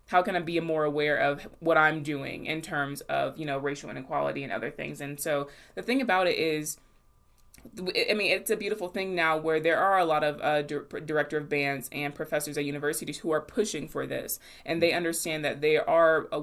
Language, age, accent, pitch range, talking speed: English, 20-39, American, 145-165 Hz, 225 wpm